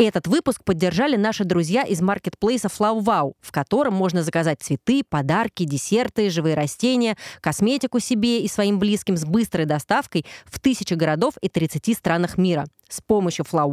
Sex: female